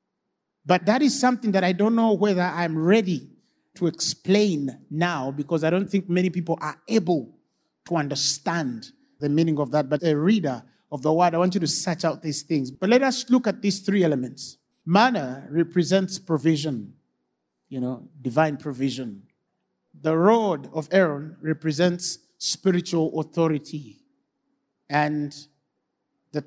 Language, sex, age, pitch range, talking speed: English, male, 50-69, 150-210 Hz, 150 wpm